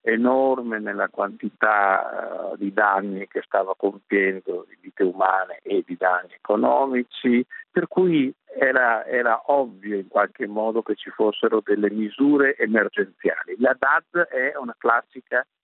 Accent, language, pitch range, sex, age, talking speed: native, Italian, 110-175 Hz, male, 50-69, 135 wpm